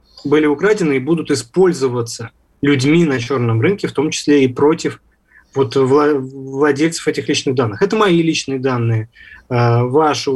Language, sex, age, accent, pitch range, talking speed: Russian, male, 20-39, native, 125-165 Hz, 140 wpm